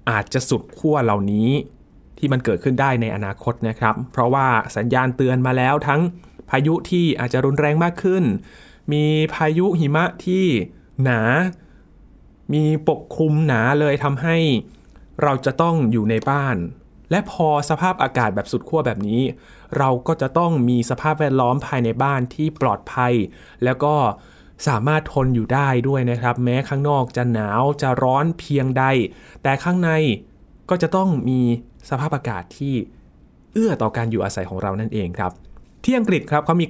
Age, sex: 20-39, male